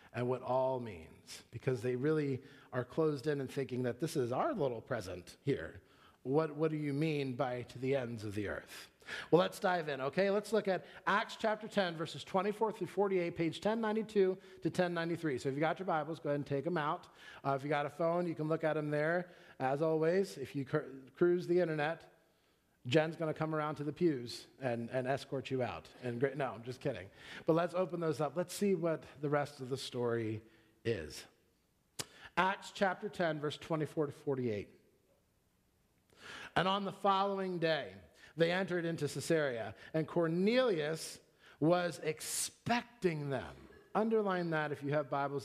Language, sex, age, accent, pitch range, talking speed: English, male, 40-59, American, 135-175 Hz, 185 wpm